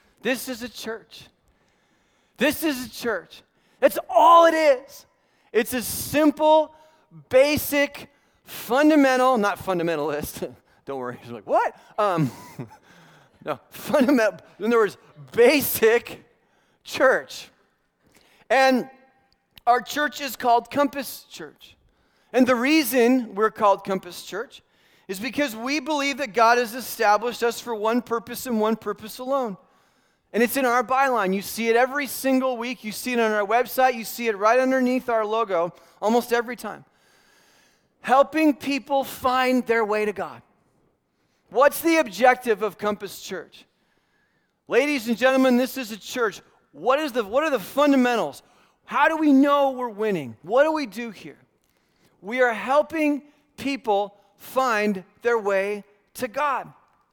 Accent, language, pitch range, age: American, English, 215-275 Hz, 40-59